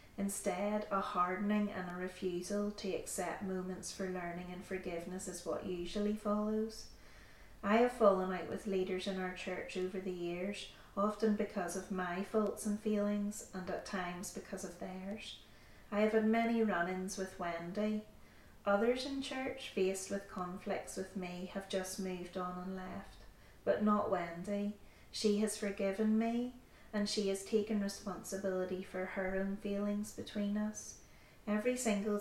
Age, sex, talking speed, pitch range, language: 30-49, female, 155 wpm, 185-210 Hz, English